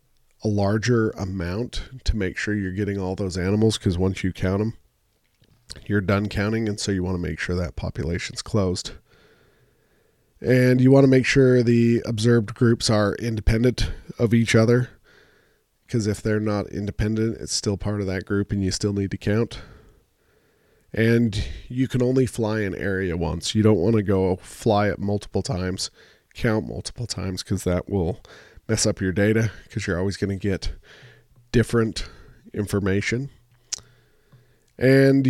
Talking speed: 165 wpm